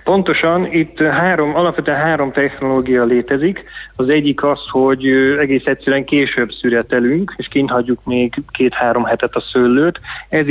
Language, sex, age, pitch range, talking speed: Hungarian, male, 30-49, 125-145 Hz, 135 wpm